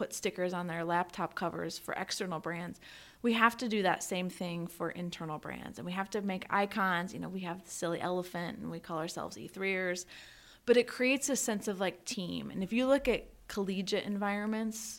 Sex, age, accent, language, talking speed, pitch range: female, 30-49, American, English, 210 wpm, 175-220 Hz